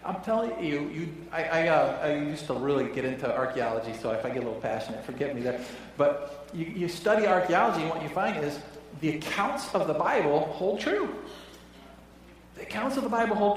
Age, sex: 40-59, male